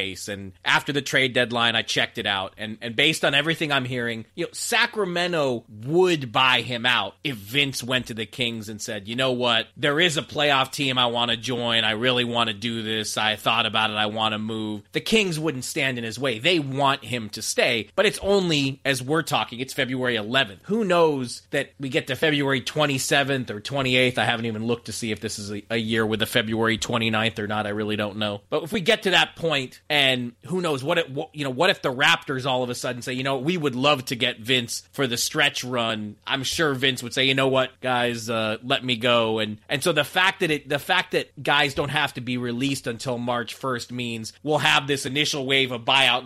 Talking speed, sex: 240 wpm, male